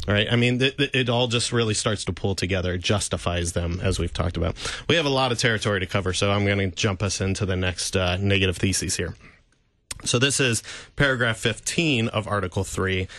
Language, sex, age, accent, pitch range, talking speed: English, male, 30-49, American, 95-115 Hz, 215 wpm